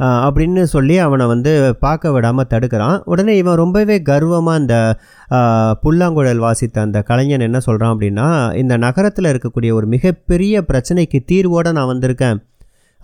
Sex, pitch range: male, 115-155 Hz